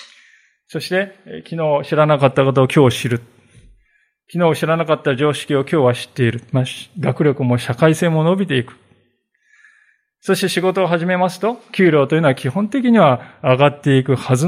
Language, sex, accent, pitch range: Japanese, male, native, 125-185 Hz